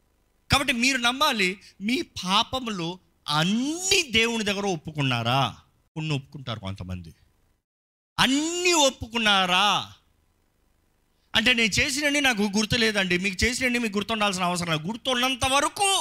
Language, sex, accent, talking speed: Telugu, male, native, 100 wpm